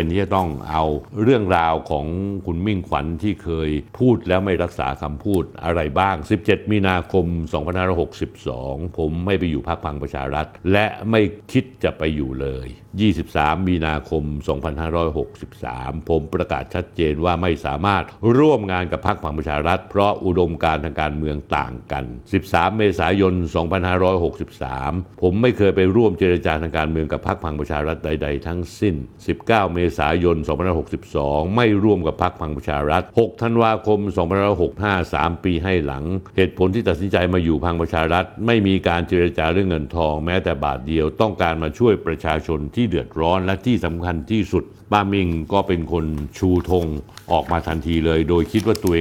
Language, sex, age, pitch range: Thai, male, 60-79, 80-95 Hz